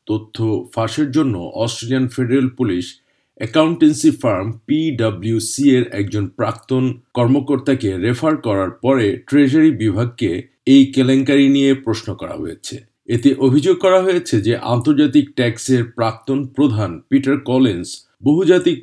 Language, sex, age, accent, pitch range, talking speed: Bengali, male, 50-69, native, 110-140 Hz, 105 wpm